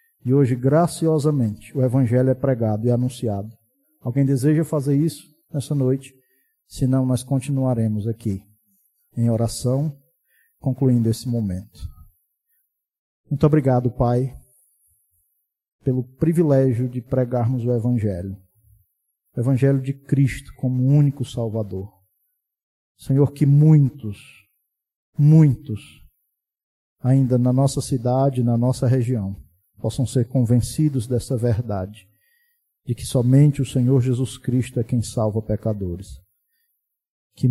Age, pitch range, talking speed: 50-69, 110-135 Hz, 110 wpm